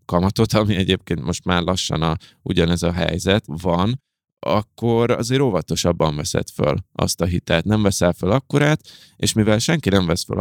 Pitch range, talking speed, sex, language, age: 85-105 Hz, 165 wpm, male, Hungarian, 20-39